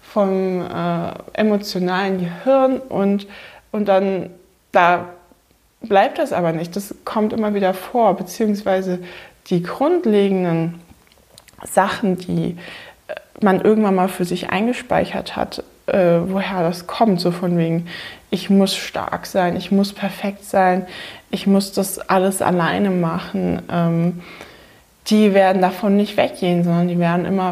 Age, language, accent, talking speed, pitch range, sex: 20-39, German, German, 130 wpm, 180-205 Hz, female